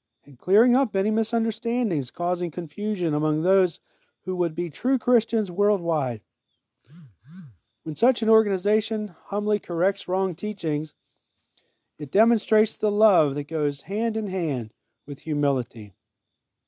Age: 40-59